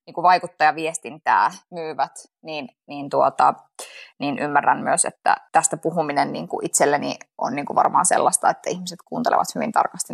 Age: 20-39